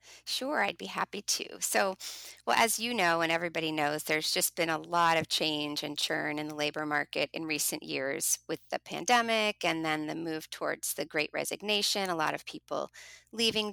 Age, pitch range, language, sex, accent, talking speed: 30-49, 160-210 Hz, English, female, American, 195 wpm